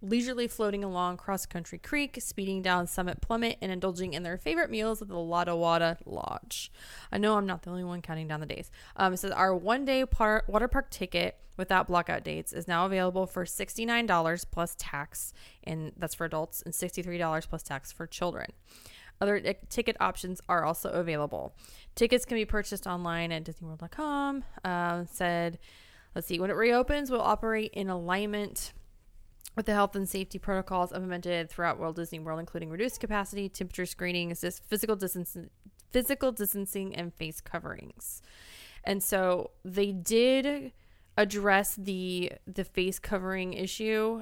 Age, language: 20-39, English